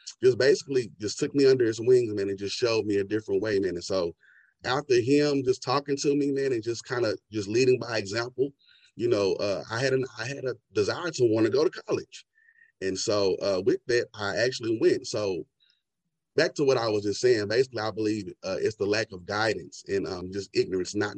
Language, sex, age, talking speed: English, male, 30-49, 225 wpm